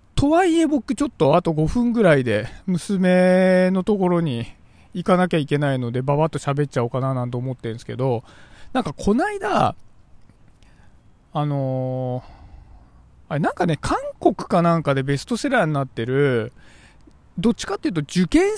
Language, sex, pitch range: Japanese, male, 135-210 Hz